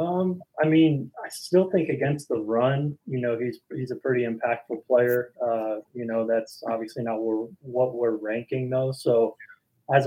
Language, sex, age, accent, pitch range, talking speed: English, male, 20-39, American, 115-130 Hz, 175 wpm